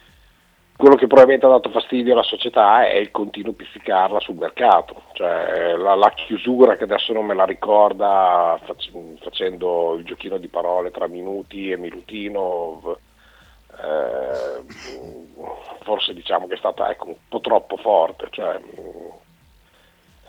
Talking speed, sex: 140 wpm, male